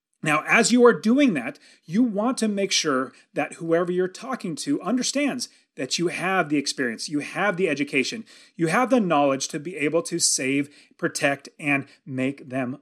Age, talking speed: 30-49, 185 wpm